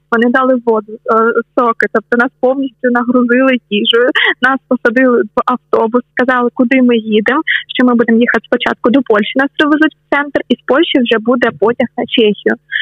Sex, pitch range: female, 230-270 Hz